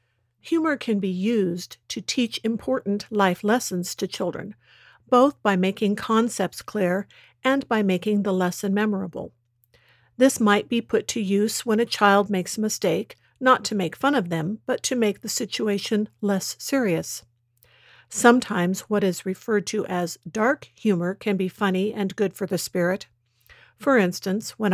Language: English